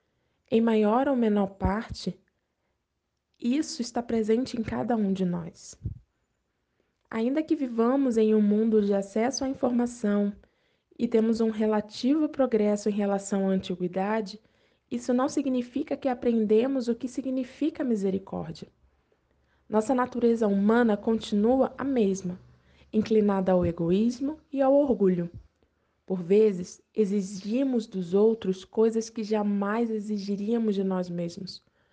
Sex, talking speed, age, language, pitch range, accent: female, 120 wpm, 20-39, Portuguese, 195-240 Hz, Brazilian